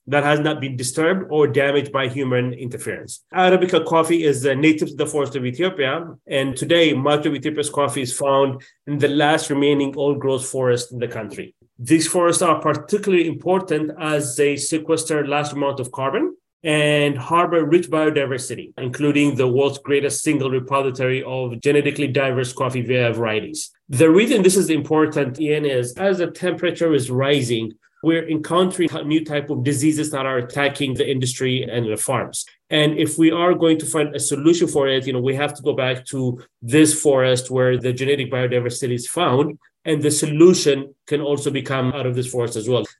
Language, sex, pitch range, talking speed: English, male, 130-160 Hz, 180 wpm